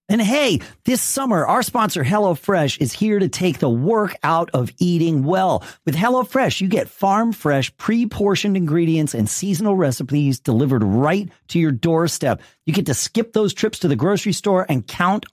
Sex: male